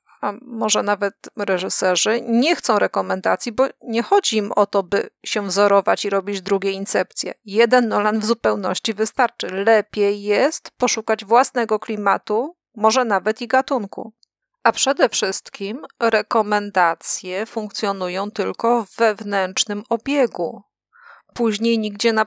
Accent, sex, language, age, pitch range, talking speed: native, female, Polish, 30-49, 200-235 Hz, 125 wpm